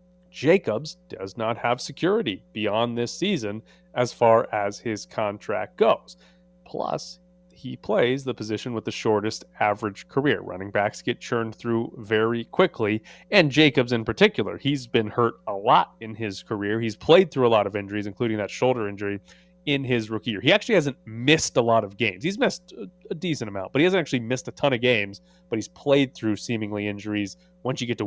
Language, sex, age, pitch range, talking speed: English, male, 30-49, 110-155 Hz, 190 wpm